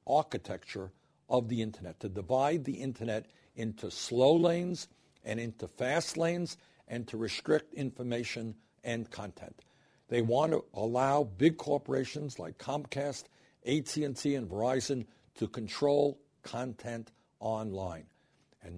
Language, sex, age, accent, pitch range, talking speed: English, male, 60-79, American, 110-145 Hz, 120 wpm